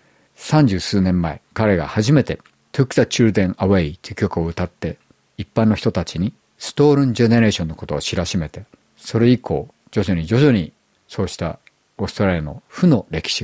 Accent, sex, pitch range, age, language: native, male, 85-115 Hz, 50-69, Japanese